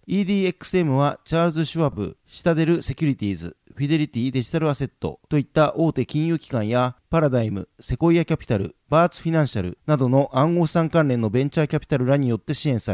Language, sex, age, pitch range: Japanese, male, 40-59, 130-165 Hz